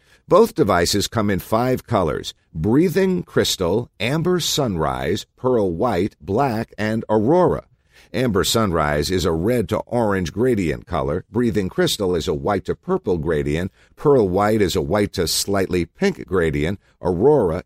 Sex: male